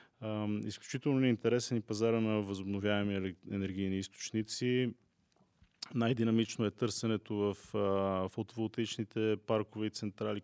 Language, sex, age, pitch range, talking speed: Bulgarian, male, 20-39, 100-110 Hz, 90 wpm